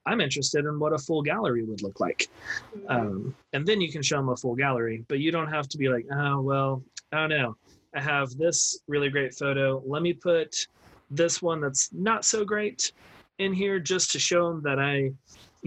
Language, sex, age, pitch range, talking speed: English, male, 30-49, 120-150 Hz, 215 wpm